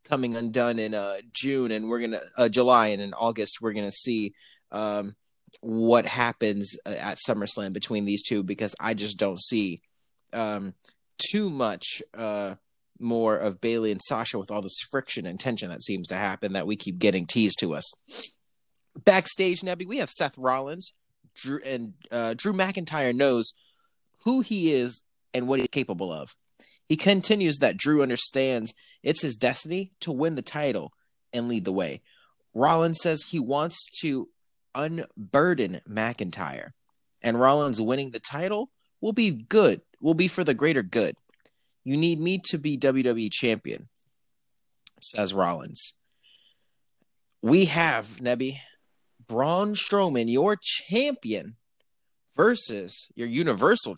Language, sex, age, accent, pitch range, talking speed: English, male, 30-49, American, 110-160 Hz, 150 wpm